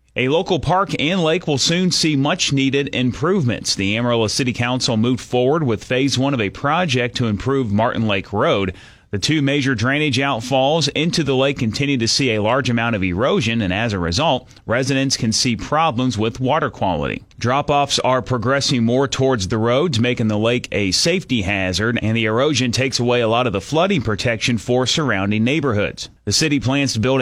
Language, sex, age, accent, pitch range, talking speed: English, male, 30-49, American, 115-140 Hz, 190 wpm